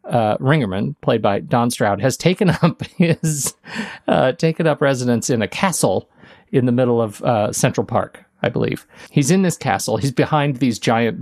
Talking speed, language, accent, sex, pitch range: 180 wpm, English, American, male, 125-165 Hz